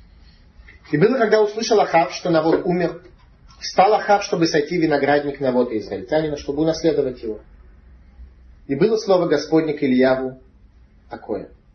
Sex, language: male, Russian